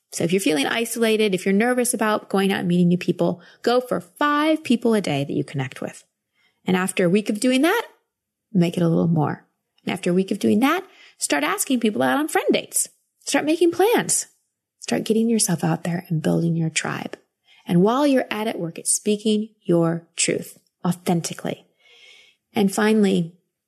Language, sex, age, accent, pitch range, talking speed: English, female, 30-49, American, 170-225 Hz, 195 wpm